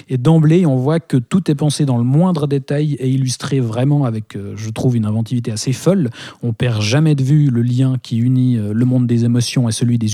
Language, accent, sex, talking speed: French, French, male, 225 wpm